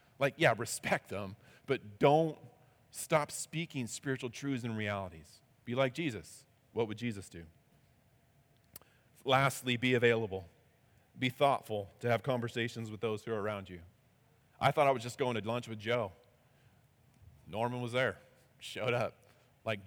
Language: English